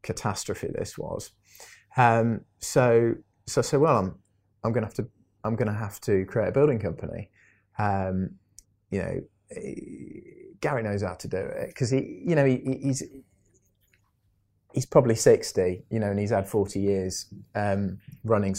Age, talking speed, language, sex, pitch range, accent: 20-39, 170 wpm, English, male, 95-115 Hz, British